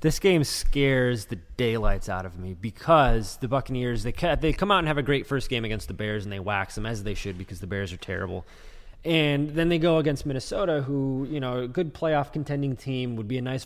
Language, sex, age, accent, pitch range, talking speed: English, male, 20-39, American, 110-140 Hz, 240 wpm